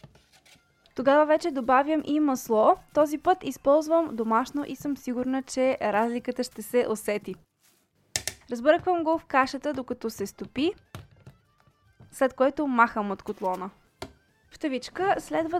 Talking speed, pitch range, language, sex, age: 120 wpm, 235-305 Hz, Bulgarian, female, 20-39